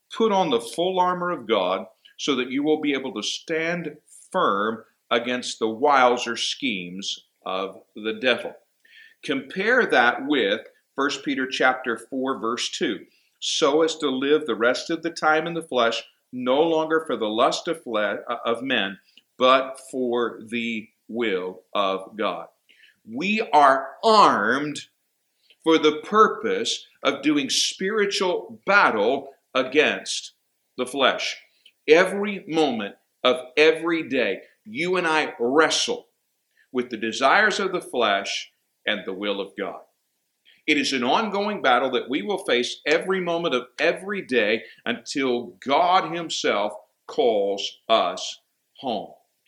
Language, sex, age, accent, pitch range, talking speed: English, male, 50-69, American, 120-180 Hz, 135 wpm